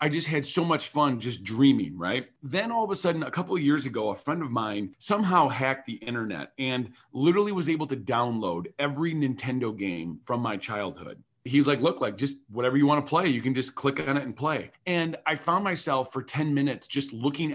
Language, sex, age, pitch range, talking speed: English, male, 40-59, 130-165 Hz, 220 wpm